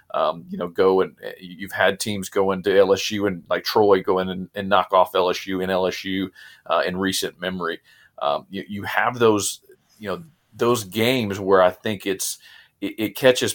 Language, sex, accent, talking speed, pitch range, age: English, male, American, 190 wpm, 95-115 Hz, 40-59